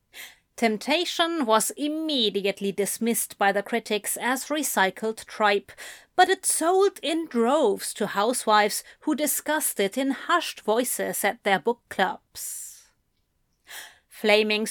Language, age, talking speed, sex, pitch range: English, 30-49, 115 wpm, female, 205-285 Hz